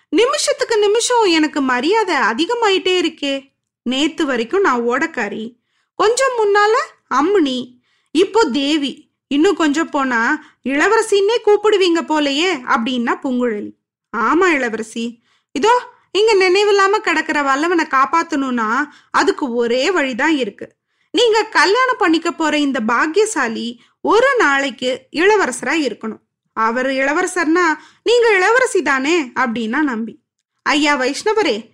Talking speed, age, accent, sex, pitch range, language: 100 wpm, 20-39, native, female, 260-395 Hz, Tamil